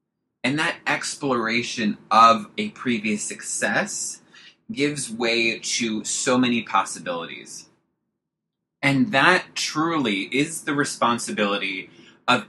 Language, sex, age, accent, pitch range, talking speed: English, male, 20-39, American, 115-145 Hz, 95 wpm